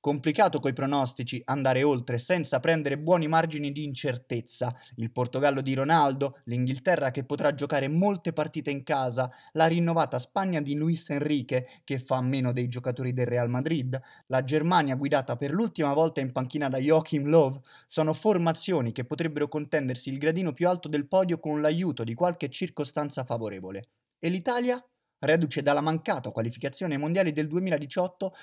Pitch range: 130-170 Hz